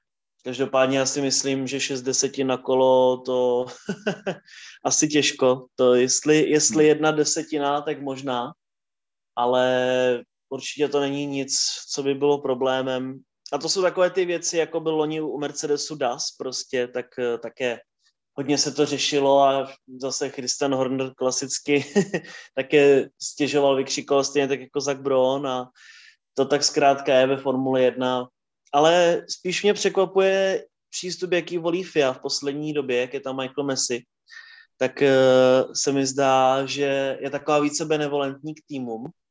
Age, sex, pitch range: 20-39, male, 130-150 Hz